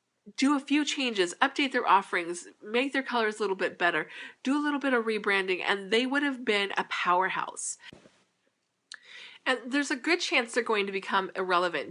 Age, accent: 30-49, American